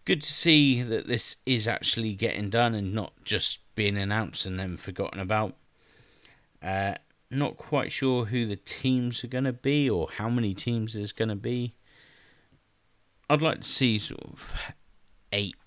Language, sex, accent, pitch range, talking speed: English, male, British, 100-130 Hz, 170 wpm